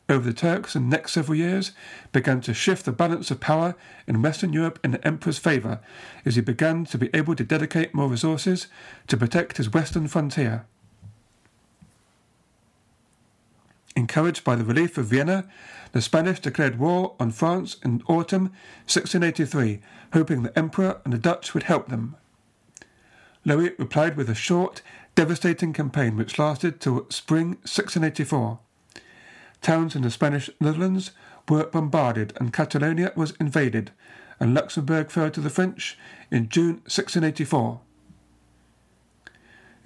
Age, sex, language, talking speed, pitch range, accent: 50-69, male, English, 140 wpm, 125-170 Hz, British